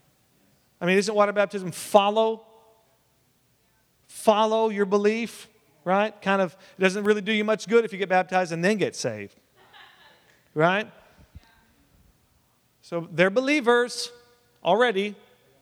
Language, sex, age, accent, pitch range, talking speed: English, male, 40-59, American, 155-225 Hz, 125 wpm